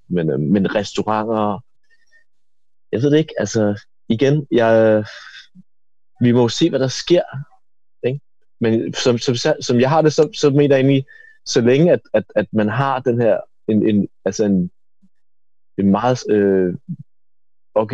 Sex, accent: male, native